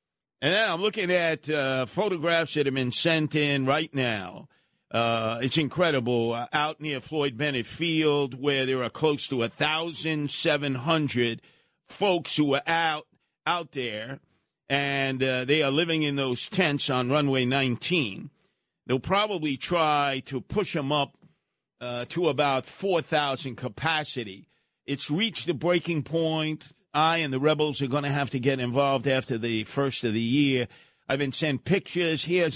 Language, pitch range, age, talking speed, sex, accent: English, 135-170 Hz, 50-69, 155 wpm, male, American